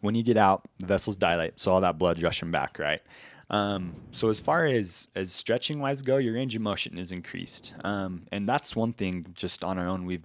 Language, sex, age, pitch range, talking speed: English, male, 20-39, 85-100 Hz, 230 wpm